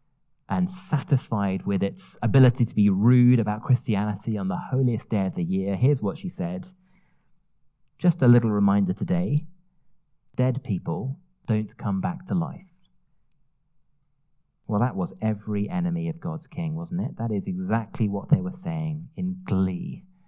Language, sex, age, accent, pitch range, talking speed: English, male, 30-49, British, 120-170 Hz, 155 wpm